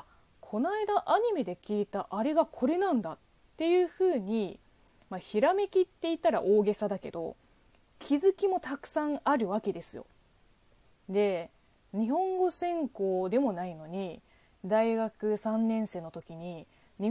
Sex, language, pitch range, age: female, Japanese, 205-300 Hz, 20-39